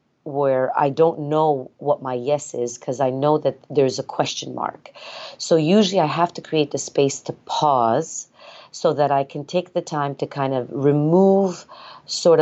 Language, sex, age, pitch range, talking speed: English, female, 40-59, 135-160 Hz, 185 wpm